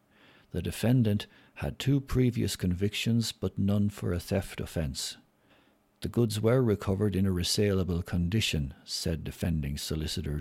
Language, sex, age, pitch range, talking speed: English, male, 60-79, 85-105 Hz, 135 wpm